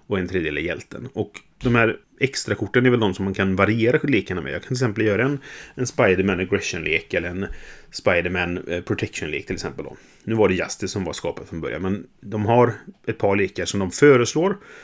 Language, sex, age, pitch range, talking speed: Swedish, male, 30-49, 95-120 Hz, 205 wpm